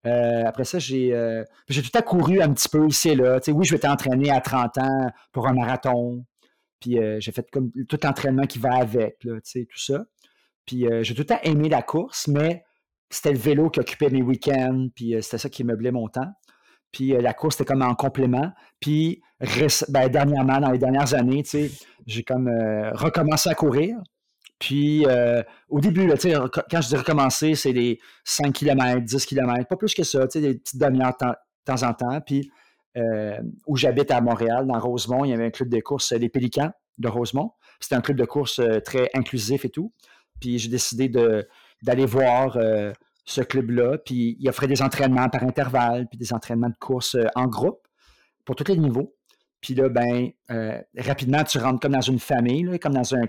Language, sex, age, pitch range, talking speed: French, male, 40-59, 120-145 Hz, 210 wpm